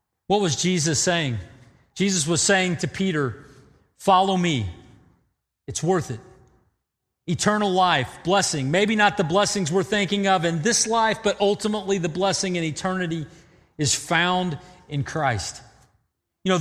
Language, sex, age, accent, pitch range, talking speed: English, male, 40-59, American, 150-200 Hz, 140 wpm